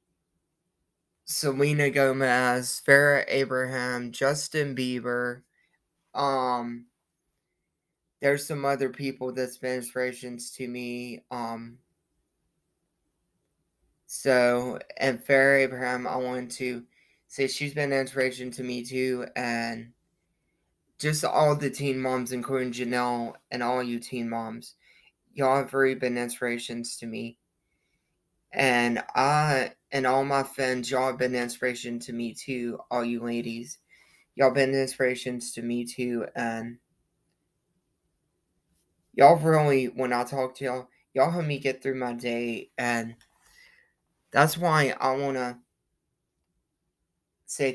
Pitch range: 120-135 Hz